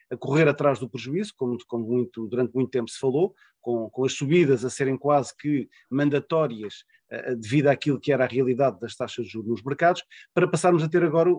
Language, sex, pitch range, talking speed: Portuguese, male, 130-150 Hz, 200 wpm